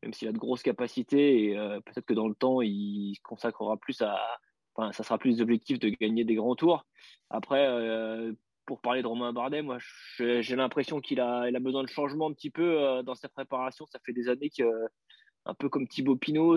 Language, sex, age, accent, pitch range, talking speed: French, male, 20-39, French, 115-140 Hz, 210 wpm